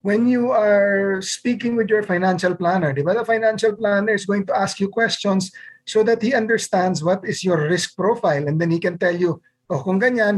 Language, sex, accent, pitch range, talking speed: Filipino, male, native, 160-220 Hz, 200 wpm